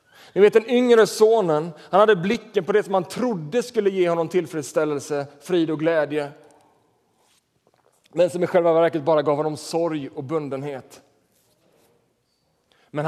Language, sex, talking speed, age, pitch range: Swedish, male, 145 wpm, 30-49, 140-180 Hz